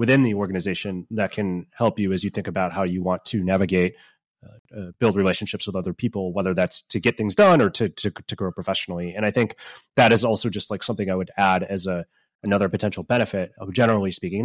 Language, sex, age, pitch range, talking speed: English, male, 30-49, 95-115 Hz, 230 wpm